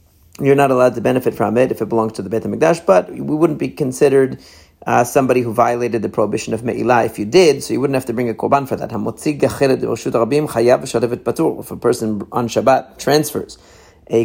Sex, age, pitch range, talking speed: male, 40-59, 115-140 Hz, 200 wpm